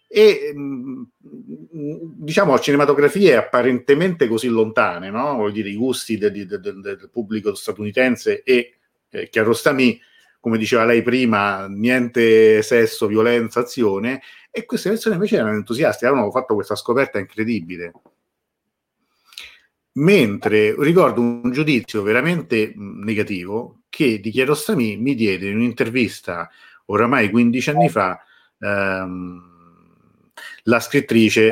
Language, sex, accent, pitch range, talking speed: Italian, male, native, 105-145 Hz, 115 wpm